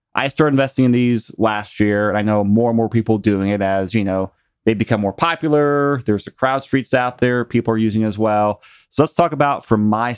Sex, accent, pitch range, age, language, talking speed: male, American, 105-130 Hz, 30-49, English, 240 wpm